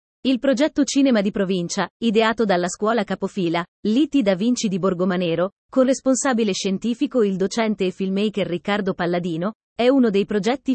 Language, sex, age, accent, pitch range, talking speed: Italian, female, 30-49, native, 190-245 Hz, 150 wpm